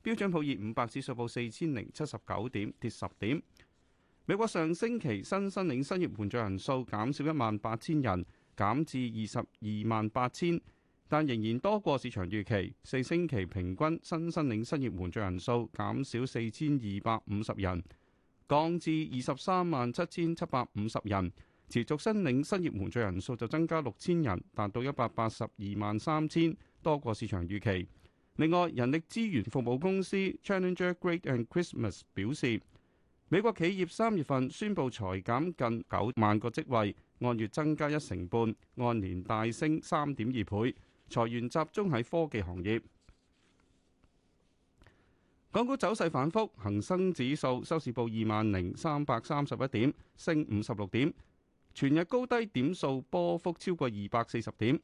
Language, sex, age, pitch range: Chinese, male, 30-49, 105-160 Hz